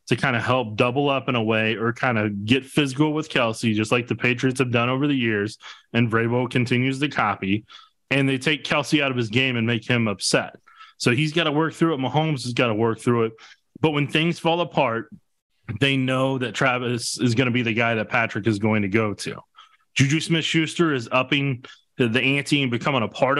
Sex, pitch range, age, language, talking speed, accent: male, 120-145 Hz, 20-39, English, 225 wpm, American